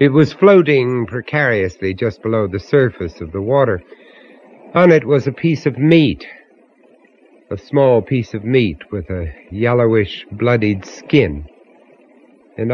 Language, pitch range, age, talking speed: English, 90-140 Hz, 60-79, 135 wpm